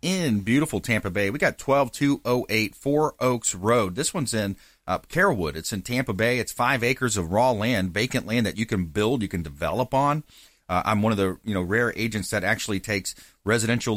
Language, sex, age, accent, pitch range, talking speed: English, male, 40-59, American, 95-120 Hz, 205 wpm